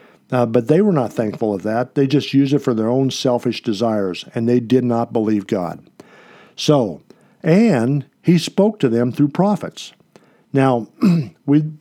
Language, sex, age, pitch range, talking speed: English, male, 50-69, 115-145 Hz, 170 wpm